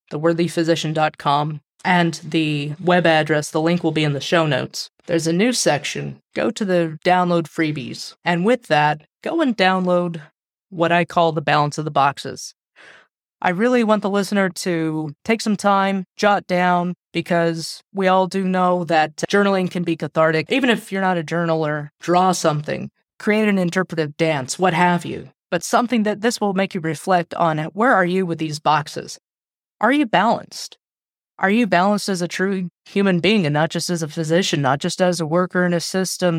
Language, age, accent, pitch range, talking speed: English, 20-39, American, 160-190 Hz, 185 wpm